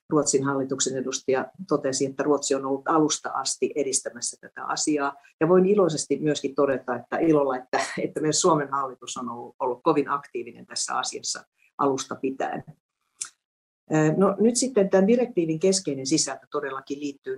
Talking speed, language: 150 wpm, Finnish